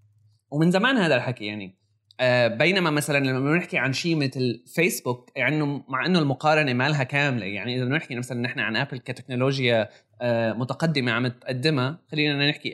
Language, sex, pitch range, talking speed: Arabic, male, 115-150 Hz, 150 wpm